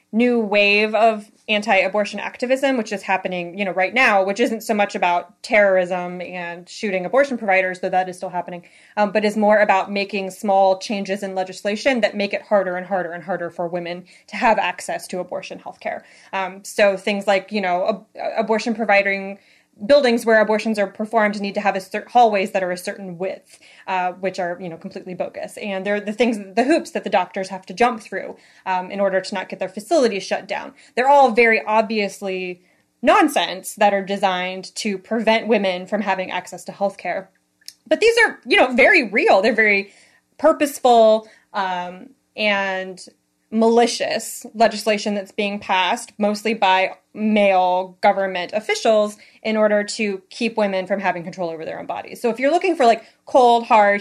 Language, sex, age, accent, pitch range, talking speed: English, female, 20-39, American, 190-225 Hz, 185 wpm